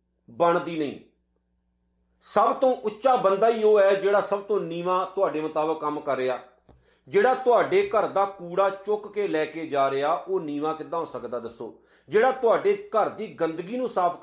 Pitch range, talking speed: 140-225 Hz, 175 wpm